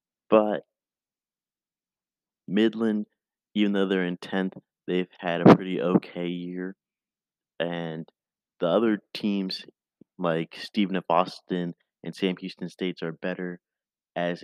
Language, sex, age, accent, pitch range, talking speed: English, male, 30-49, American, 85-100 Hz, 115 wpm